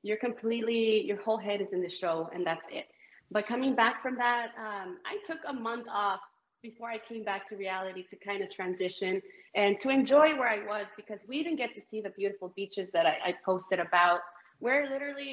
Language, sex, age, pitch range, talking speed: English, female, 20-39, 190-230 Hz, 215 wpm